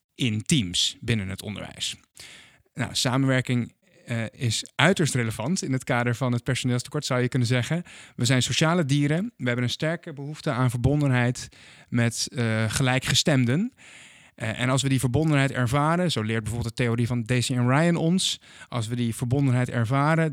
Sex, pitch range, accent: male, 120-150 Hz, Dutch